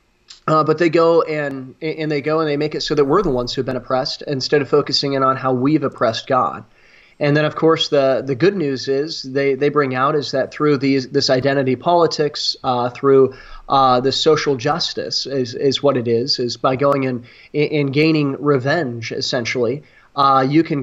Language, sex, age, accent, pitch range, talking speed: English, male, 30-49, American, 130-150 Hz, 210 wpm